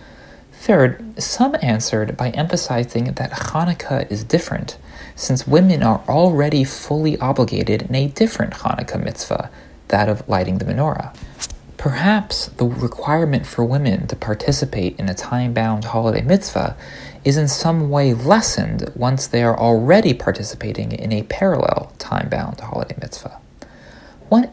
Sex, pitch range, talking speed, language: male, 115-160 Hz, 130 wpm, English